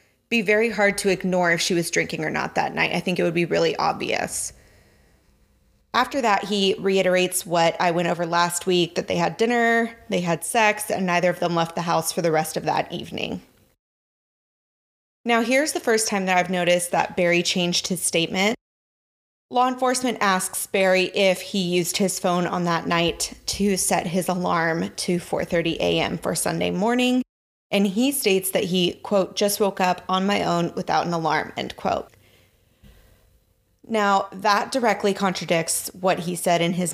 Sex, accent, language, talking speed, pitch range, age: female, American, English, 180 wpm, 175-205 Hz, 20-39